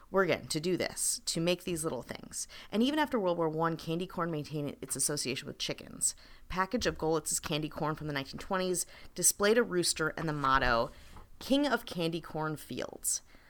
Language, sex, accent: English, female, American